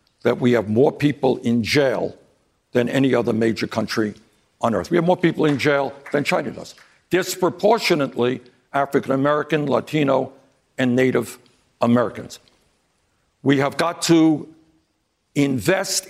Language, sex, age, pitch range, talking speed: English, male, 60-79, 130-170 Hz, 125 wpm